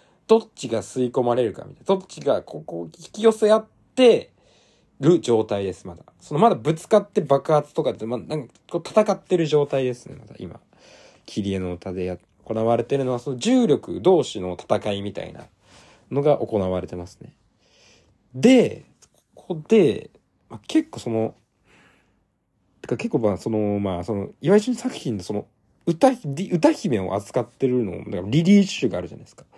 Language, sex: Japanese, male